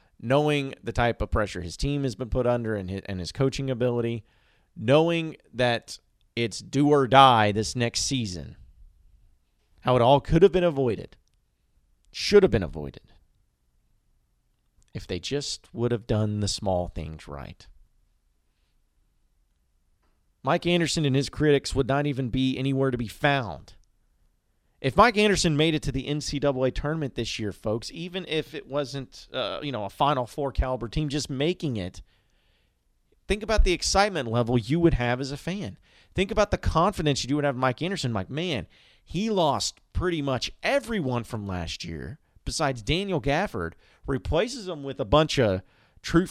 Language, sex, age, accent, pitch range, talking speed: English, male, 40-59, American, 105-155 Hz, 165 wpm